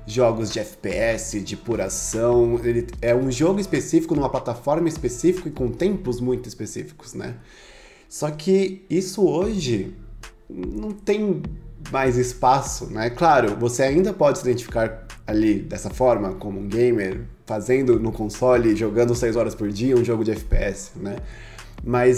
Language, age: Portuguese, 20-39